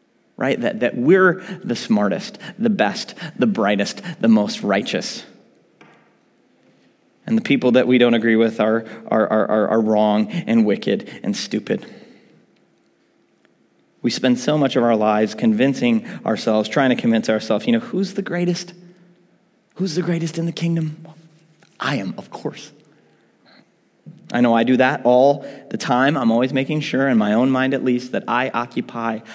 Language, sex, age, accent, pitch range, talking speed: English, male, 30-49, American, 125-195 Hz, 160 wpm